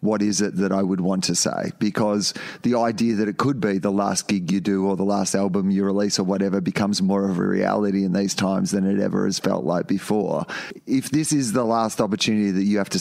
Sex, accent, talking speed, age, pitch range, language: male, Australian, 250 wpm, 30-49, 95-115 Hz, English